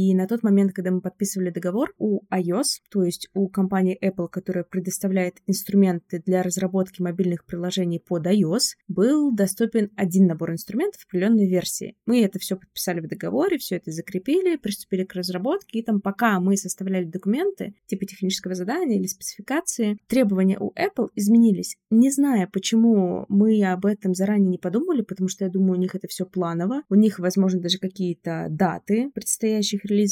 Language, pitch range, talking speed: Russian, 185-220 Hz, 165 wpm